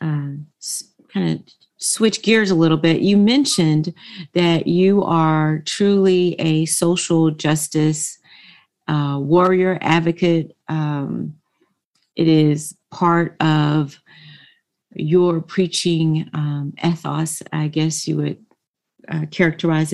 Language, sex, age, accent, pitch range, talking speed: English, female, 40-59, American, 155-185 Hz, 105 wpm